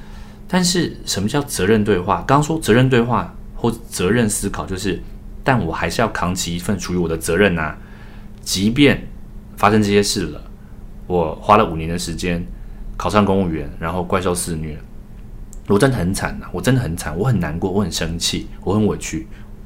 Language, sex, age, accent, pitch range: Chinese, male, 30-49, native, 90-115 Hz